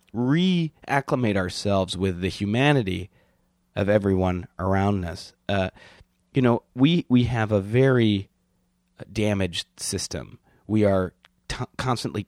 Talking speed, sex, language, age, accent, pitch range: 110 wpm, male, English, 30-49, American, 90-120 Hz